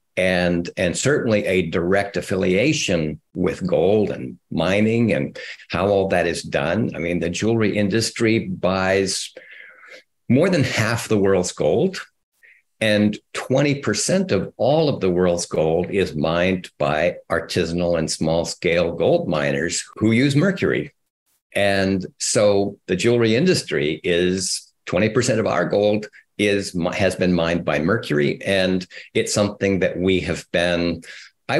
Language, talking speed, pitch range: English, 135 wpm, 90-110 Hz